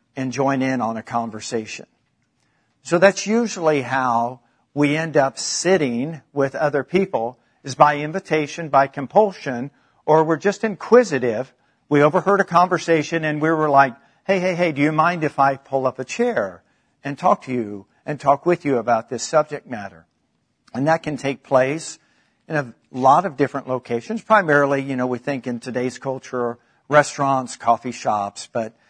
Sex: male